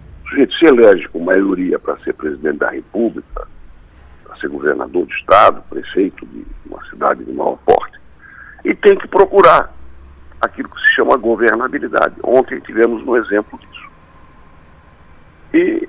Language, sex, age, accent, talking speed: Portuguese, male, 60-79, Brazilian, 140 wpm